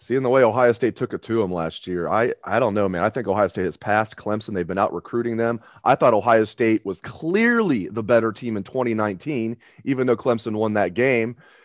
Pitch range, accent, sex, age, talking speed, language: 95-115 Hz, American, male, 30-49, 230 wpm, English